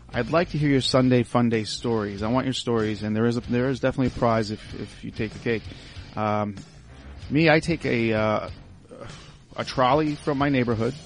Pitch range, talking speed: 110-135 Hz, 210 wpm